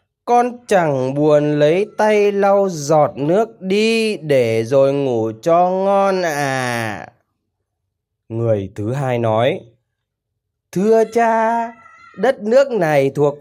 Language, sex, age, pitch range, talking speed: Vietnamese, male, 20-39, 135-225 Hz, 110 wpm